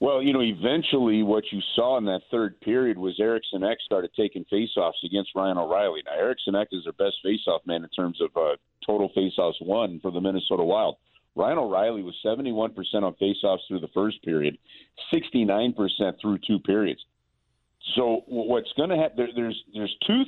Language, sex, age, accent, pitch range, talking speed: English, male, 50-69, American, 105-140 Hz, 190 wpm